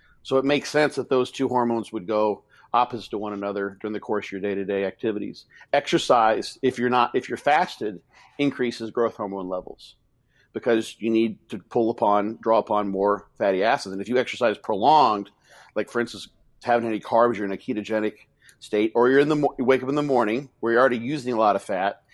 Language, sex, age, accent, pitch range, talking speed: English, male, 50-69, American, 105-125 Hz, 215 wpm